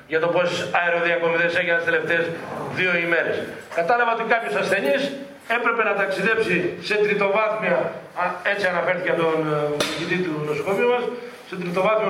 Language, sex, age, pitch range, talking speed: Greek, male, 40-59, 175-220 Hz, 135 wpm